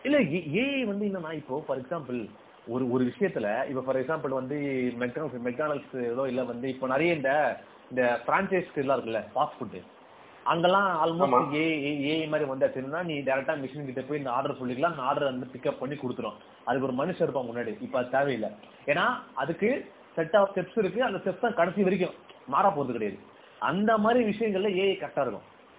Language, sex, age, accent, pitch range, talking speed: Tamil, male, 30-49, native, 130-180 Hz, 165 wpm